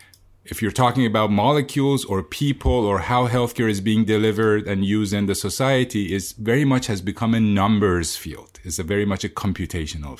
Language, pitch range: English, 95-115 Hz